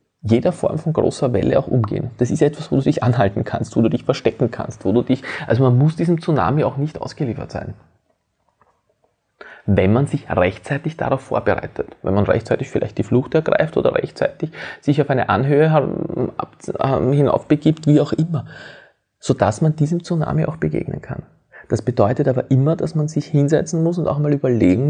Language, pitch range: German, 125-160 Hz